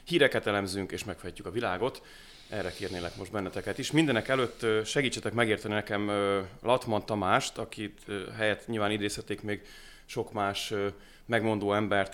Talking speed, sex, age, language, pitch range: 135 wpm, male, 30-49, Hungarian, 95-115 Hz